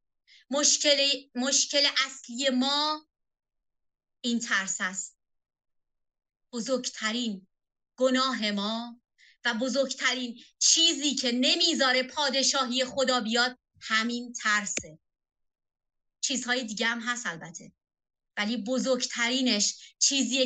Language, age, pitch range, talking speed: Persian, 30-49, 225-280 Hz, 80 wpm